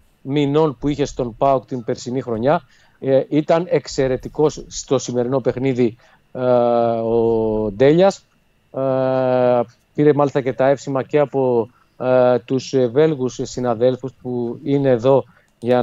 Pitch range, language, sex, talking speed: 120-145 Hz, Greek, male, 125 wpm